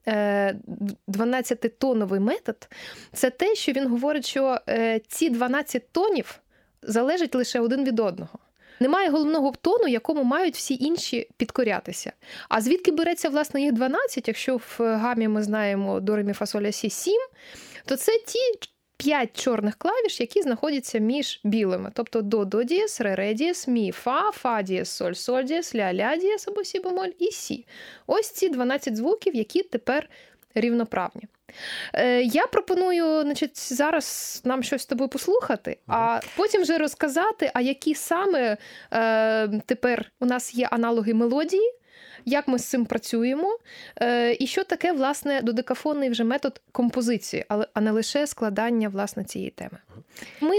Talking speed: 130 wpm